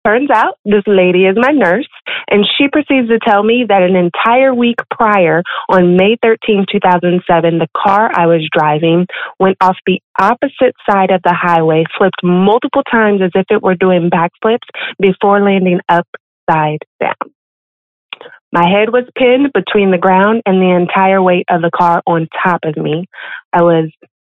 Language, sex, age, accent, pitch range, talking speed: English, female, 30-49, American, 170-210 Hz, 165 wpm